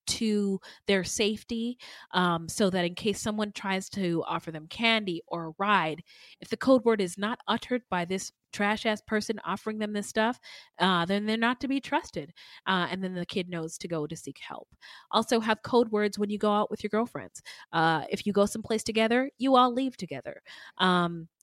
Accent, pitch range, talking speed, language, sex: American, 175-220 Hz, 205 wpm, English, female